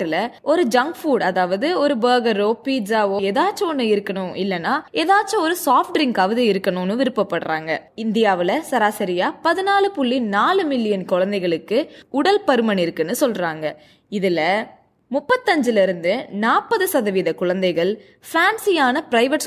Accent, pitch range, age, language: native, 195-295 Hz, 20-39, Tamil